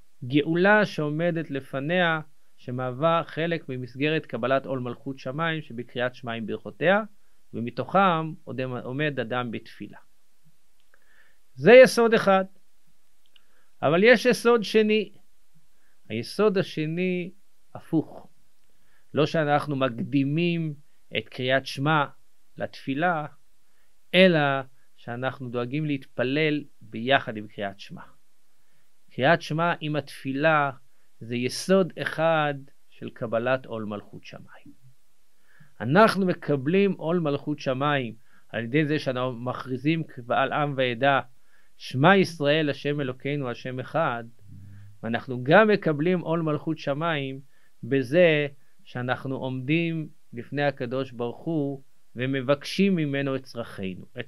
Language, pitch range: Hebrew, 125-165 Hz